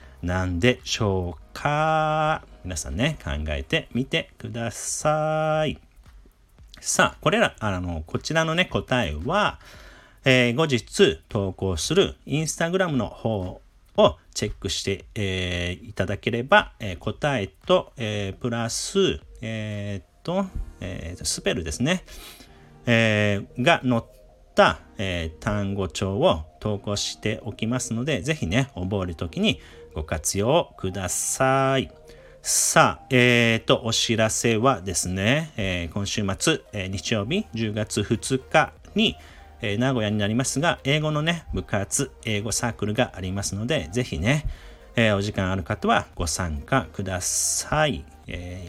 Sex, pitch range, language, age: male, 90-130 Hz, Japanese, 40-59